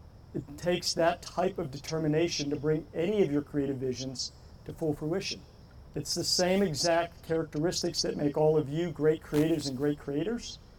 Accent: American